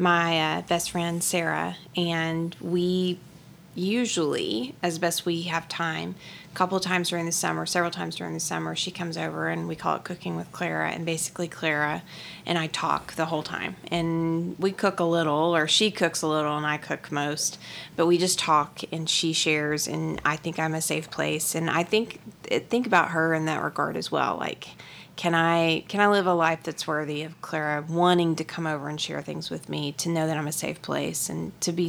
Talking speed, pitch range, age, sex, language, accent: 215 wpm, 150-170 Hz, 30-49, female, English, American